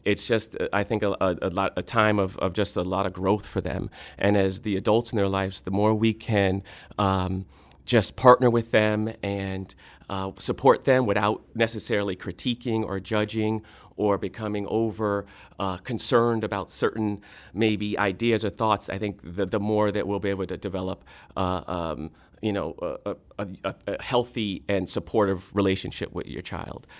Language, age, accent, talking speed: English, 40-59, American, 180 wpm